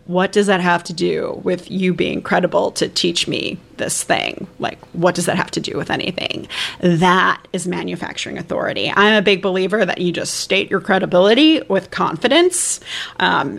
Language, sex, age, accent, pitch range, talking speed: English, female, 30-49, American, 185-235 Hz, 180 wpm